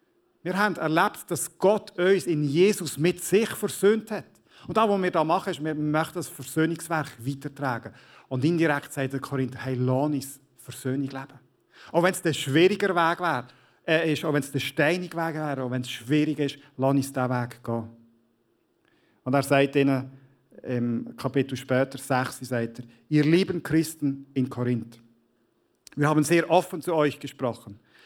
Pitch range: 130-170 Hz